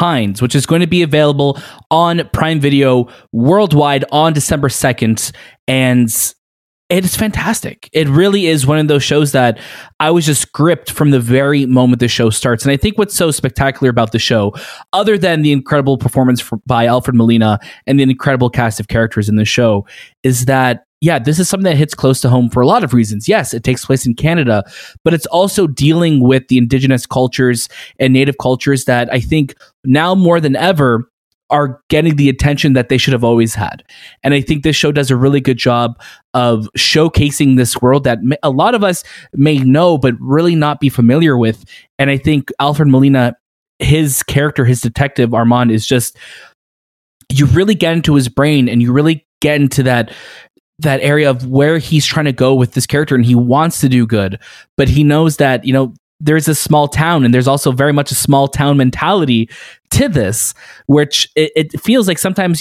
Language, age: English, 20-39